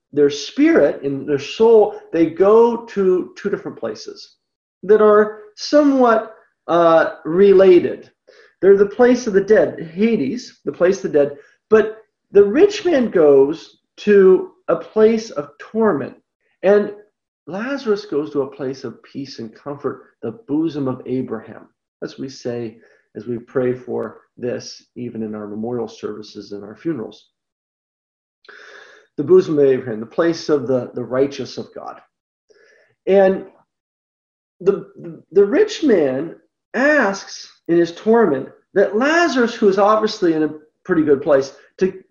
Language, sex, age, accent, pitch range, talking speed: English, male, 50-69, American, 140-225 Hz, 145 wpm